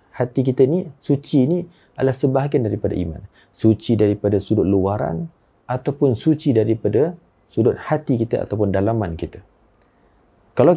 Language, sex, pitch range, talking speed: Malay, male, 105-145 Hz, 130 wpm